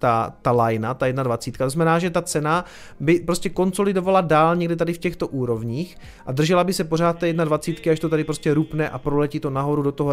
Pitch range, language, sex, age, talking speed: 140-170 Hz, Czech, male, 30-49, 220 wpm